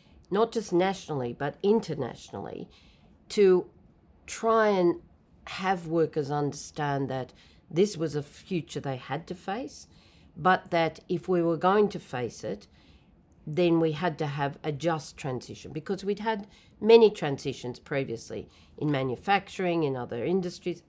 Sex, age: female, 50-69